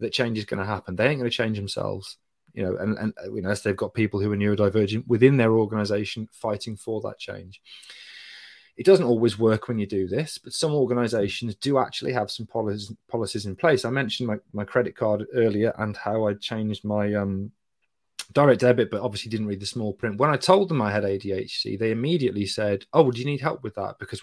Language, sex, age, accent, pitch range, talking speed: English, male, 30-49, British, 105-125 Hz, 230 wpm